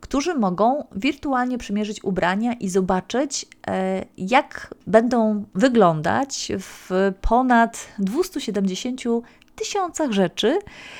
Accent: native